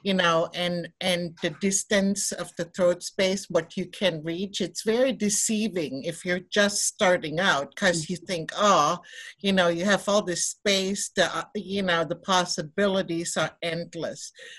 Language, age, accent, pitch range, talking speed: English, 60-79, American, 175-215 Hz, 165 wpm